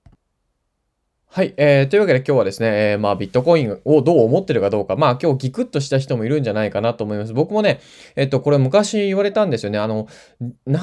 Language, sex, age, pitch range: Japanese, male, 20-39, 110-175 Hz